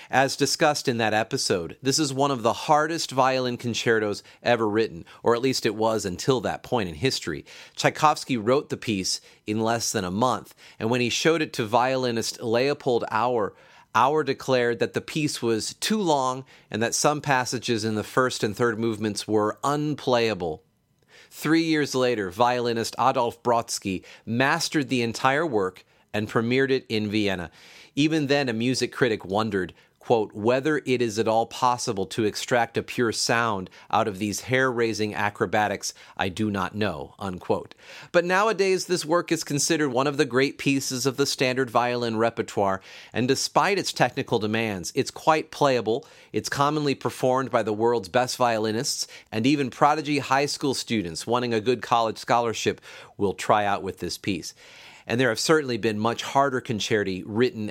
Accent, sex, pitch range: American, male, 110-140 Hz